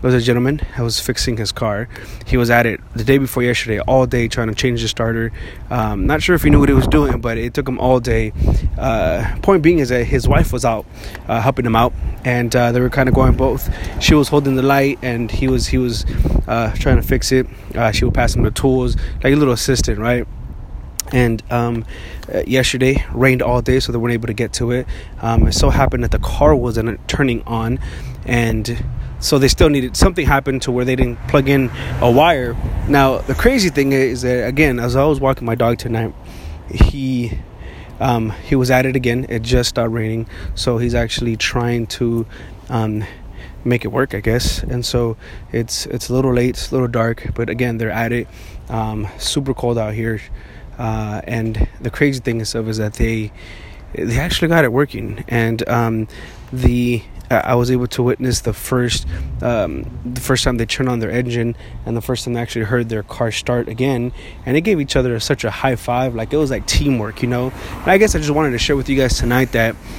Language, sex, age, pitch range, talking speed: English, male, 20-39, 110-130 Hz, 220 wpm